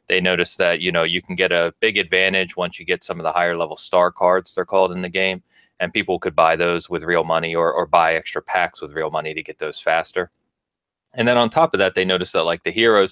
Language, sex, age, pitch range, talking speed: English, male, 30-49, 85-95 Hz, 265 wpm